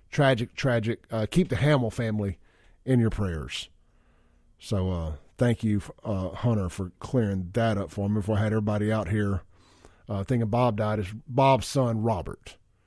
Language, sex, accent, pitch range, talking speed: English, male, American, 95-125 Hz, 170 wpm